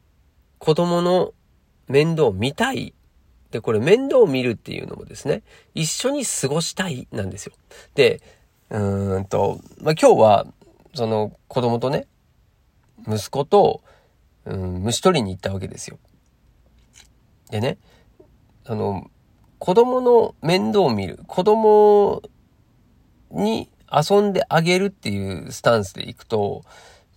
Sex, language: male, Japanese